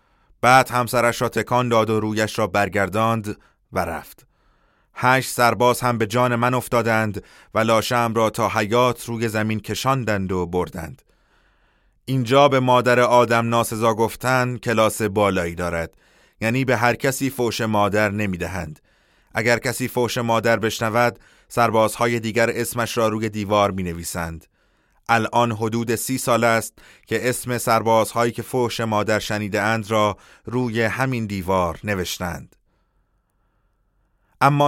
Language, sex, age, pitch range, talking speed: Persian, male, 30-49, 100-120 Hz, 135 wpm